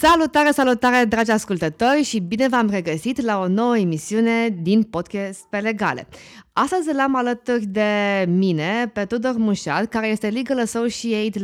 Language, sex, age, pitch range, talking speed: Romanian, female, 20-39, 185-270 Hz, 150 wpm